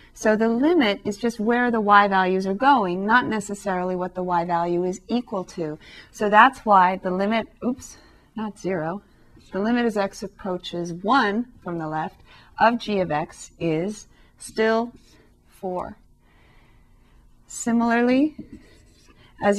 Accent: American